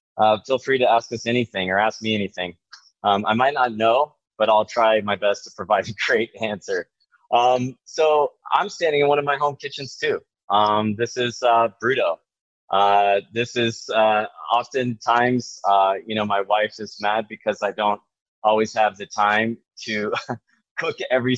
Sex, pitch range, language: male, 100-115 Hz, English